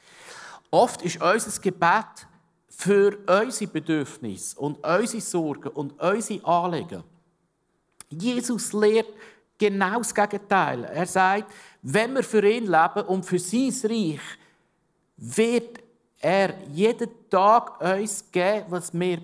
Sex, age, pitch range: male, 50-69, 155-195 Hz